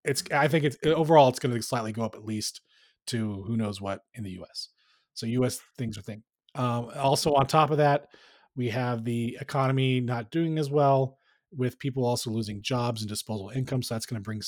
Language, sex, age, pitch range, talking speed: English, male, 30-49, 115-145 Hz, 215 wpm